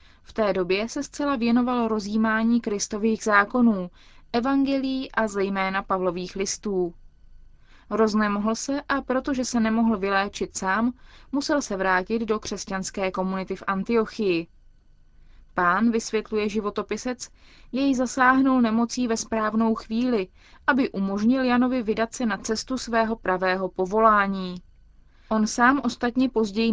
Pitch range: 200-240 Hz